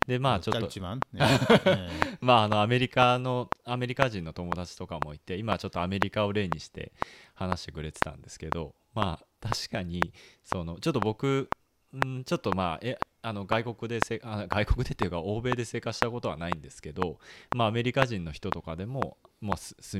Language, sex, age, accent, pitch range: Japanese, male, 20-39, native, 85-115 Hz